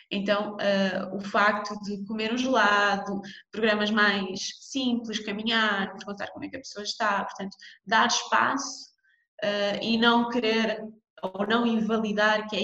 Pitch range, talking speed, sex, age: 195-230 Hz, 140 wpm, female, 20-39